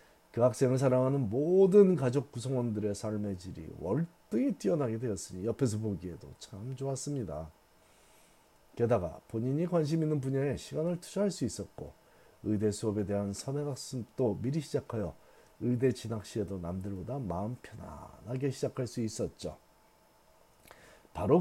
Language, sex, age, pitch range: Korean, male, 40-59, 105-145 Hz